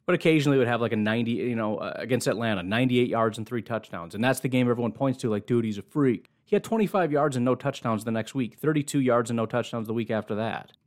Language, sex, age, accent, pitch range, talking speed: English, male, 30-49, American, 110-140 Hz, 270 wpm